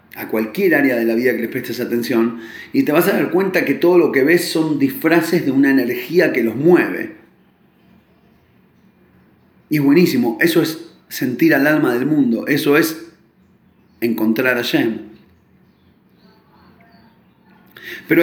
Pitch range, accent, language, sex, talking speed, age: 130-200 Hz, Argentinian, Spanish, male, 150 wpm, 40-59